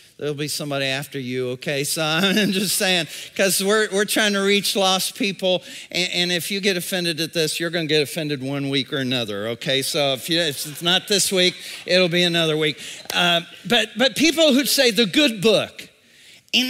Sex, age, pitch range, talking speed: male, 50-69, 175-270 Hz, 210 wpm